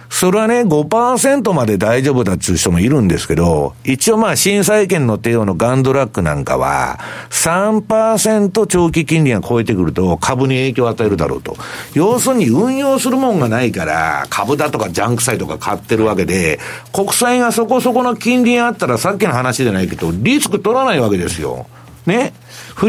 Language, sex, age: Japanese, male, 60-79